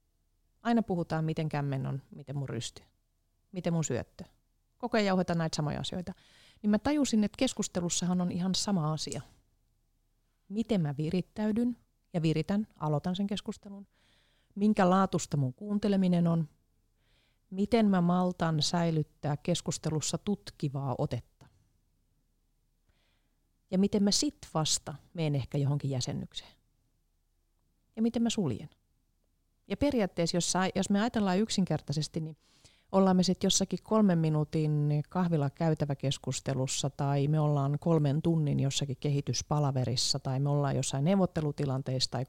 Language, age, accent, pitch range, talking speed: Finnish, 30-49, native, 135-185 Hz, 120 wpm